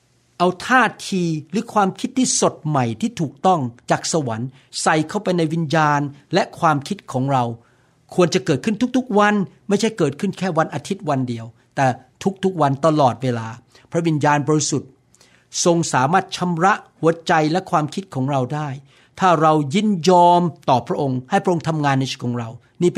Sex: male